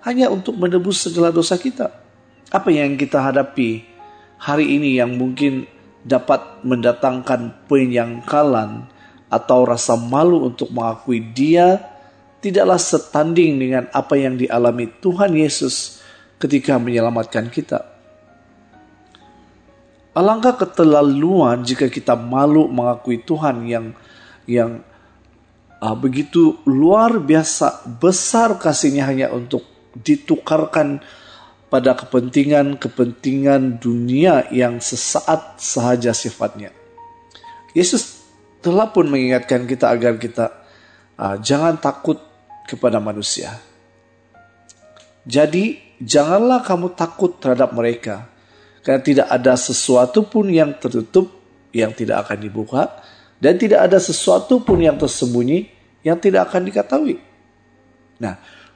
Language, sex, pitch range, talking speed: Indonesian, male, 120-180 Hz, 105 wpm